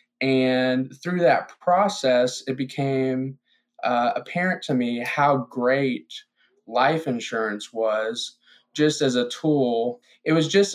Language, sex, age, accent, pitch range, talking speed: English, male, 20-39, American, 125-145 Hz, 125 wpm